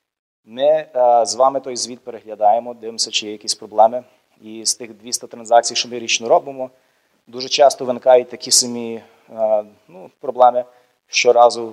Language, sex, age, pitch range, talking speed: Ukrainian, male, 30-49, 115-135 Hz, 155 wpm